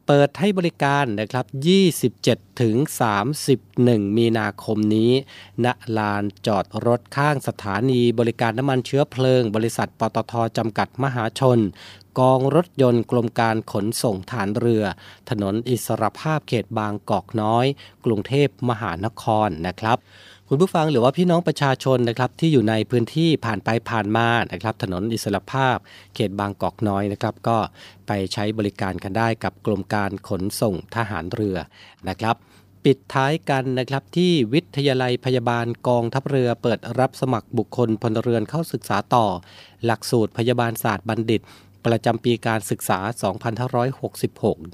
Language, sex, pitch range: Thai, male, 105-130 Hz